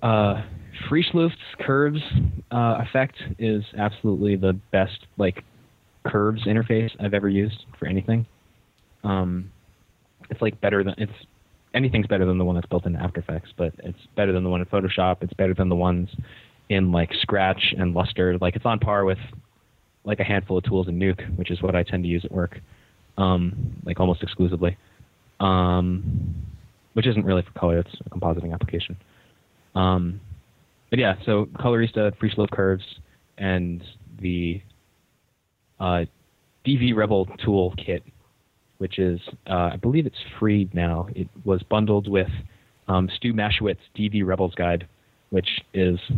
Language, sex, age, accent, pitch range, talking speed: English, male, 20-39, American, 90-105 Hz, 160 wpm